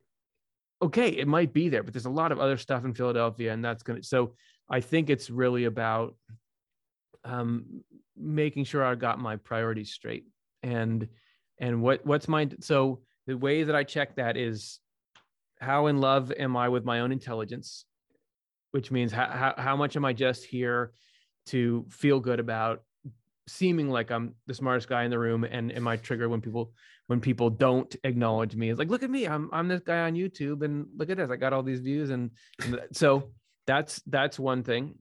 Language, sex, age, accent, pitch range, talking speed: English, male, 30-49, American, 115-140 Hz, 195 wpm